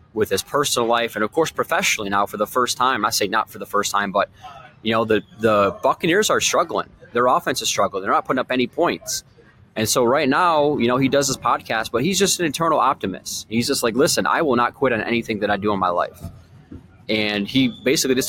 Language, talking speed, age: English, 245 wpm, 20-39